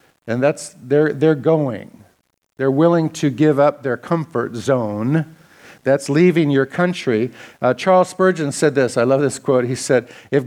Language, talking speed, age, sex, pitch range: English, 165 wpm, 50-69, male, 125-160 Hz